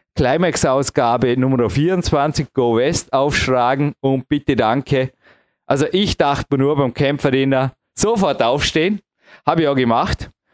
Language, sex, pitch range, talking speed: German, male, 125-150 Hz, 120 wpm